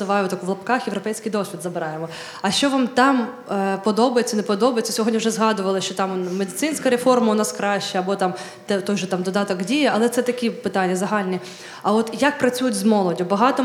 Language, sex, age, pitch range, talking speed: Ukrainian, female, 20-39, 200-240 Hz, 185 wpm